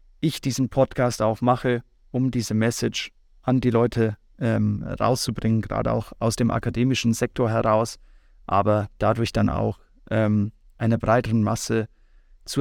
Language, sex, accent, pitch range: German, male, German, 115-140 Hz